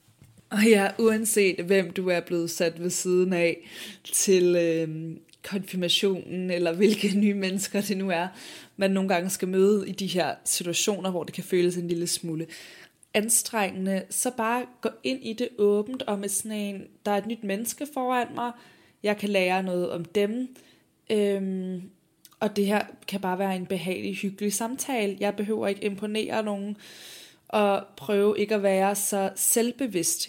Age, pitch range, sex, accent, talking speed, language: 20-39, 180-210 Hz, female, native, 170 wpm, Danish